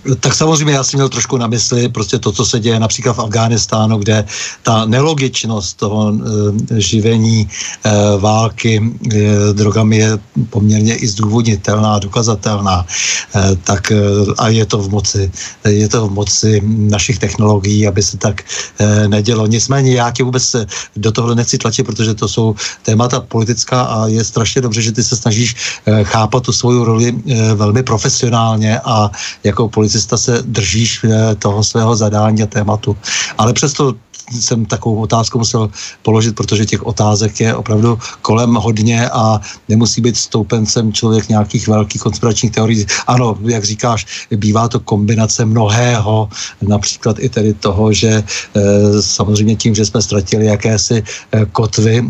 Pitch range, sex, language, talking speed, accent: 105-120 Hz, male, Czech, 150 wpm, native